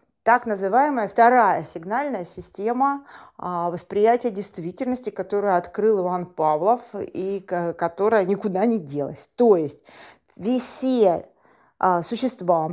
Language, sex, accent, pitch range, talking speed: Russian, female, native, 175-235 Hz, 95 wpm